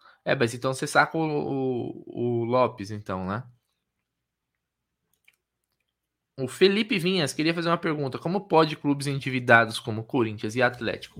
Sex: male